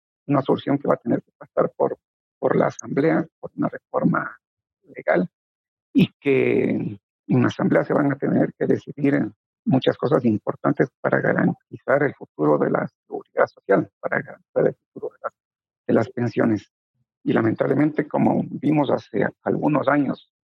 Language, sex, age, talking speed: Spanish, male, 50-69, 160 wpm